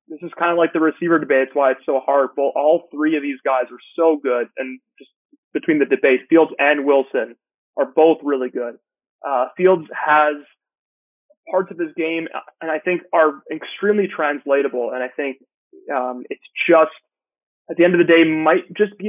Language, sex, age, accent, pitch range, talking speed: English, male, 20-39, American, 135-175 Hz, 195 wpm